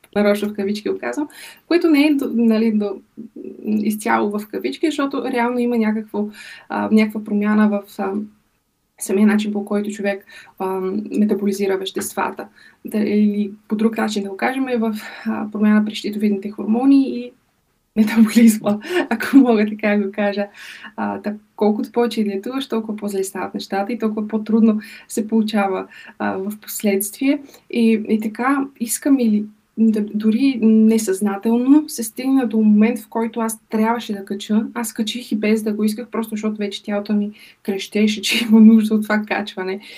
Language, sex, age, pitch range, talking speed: Bulgarian, female, 20-39, 210-225 Hz, 155 wpm